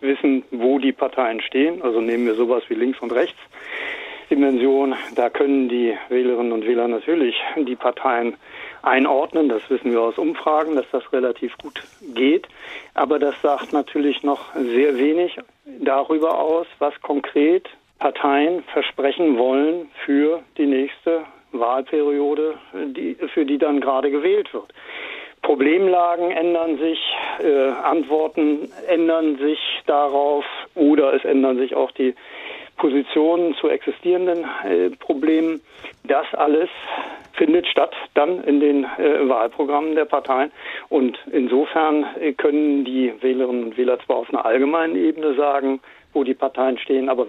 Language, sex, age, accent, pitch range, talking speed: German, male, 60-79, German, 130-165 Hz, 135 wpm